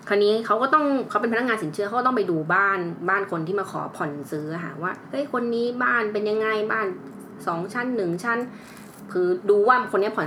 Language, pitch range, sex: Thai, 195-270 Hz, female